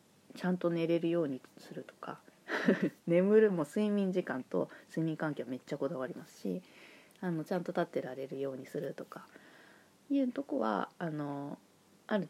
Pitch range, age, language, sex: 150-190 Hz, 20-39, Japanese, female